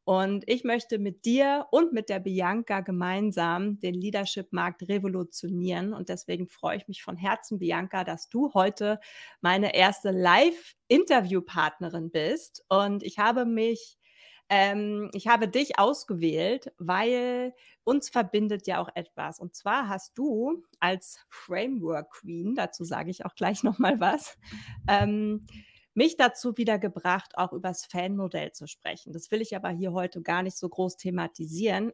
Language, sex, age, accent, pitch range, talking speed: English, female, 30-49, German, 180-225 Hz, 150 wpm